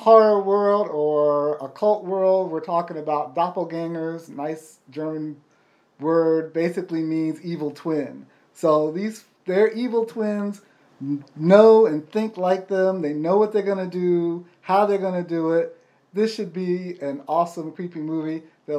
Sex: male